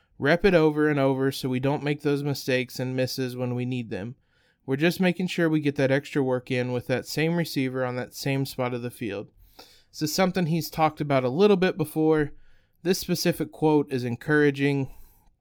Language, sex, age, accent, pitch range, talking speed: English, male, 20-39, American, 125-150 Hz, 205 wpm